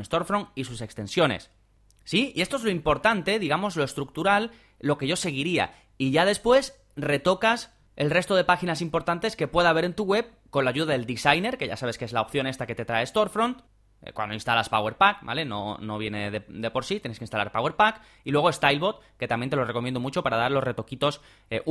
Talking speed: 215 wpm